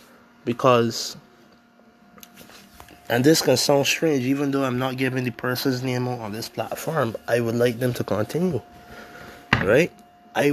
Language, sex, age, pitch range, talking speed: English, male, 20-39, 115-135 Hz, 150 wpm